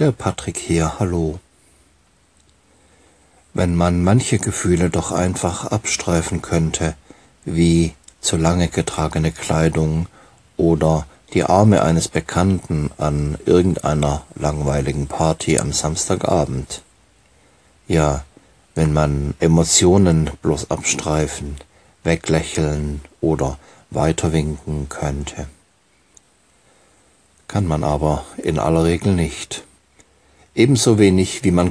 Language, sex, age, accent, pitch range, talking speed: German, male, 60-79, German, 75-90 Hz, 90 wpm